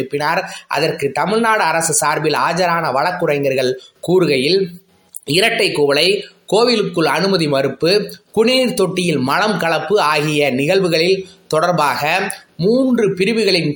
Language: Tamil